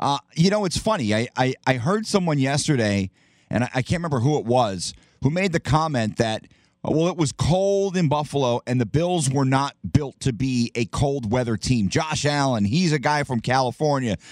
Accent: American